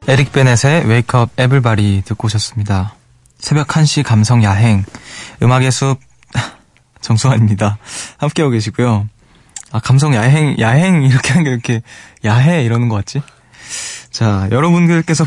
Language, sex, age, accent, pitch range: Korean, male, 20-39, native, 110-140 Hz